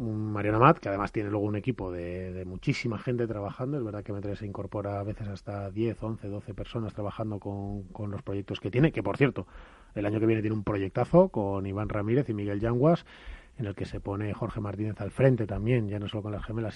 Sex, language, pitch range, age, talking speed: male, Spanish, 100-115 Hz, 30-49, 235 wpm